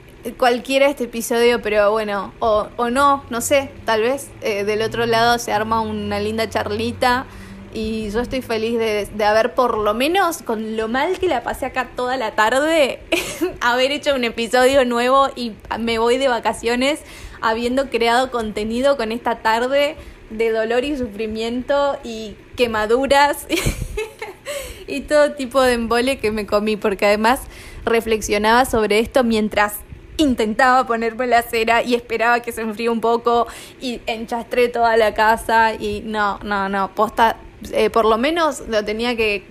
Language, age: Spanish, 20-39